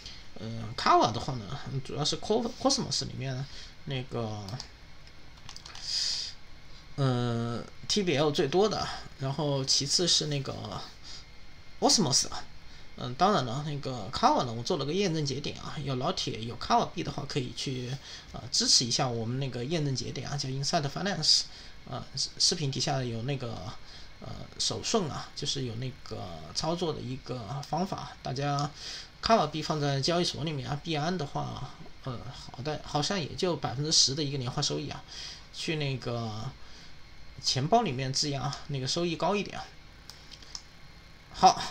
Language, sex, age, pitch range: Chinese, male, 20-39, 125-155 Hz